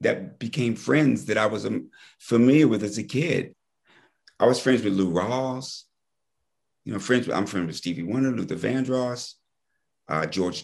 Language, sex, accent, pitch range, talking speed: English, male, American, 95-130 Hz, 165 wpm